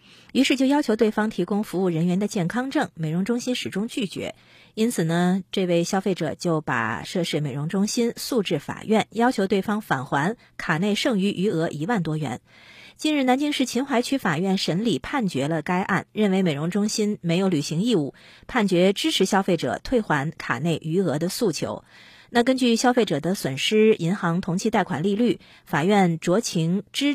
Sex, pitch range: female, 165-230 Hz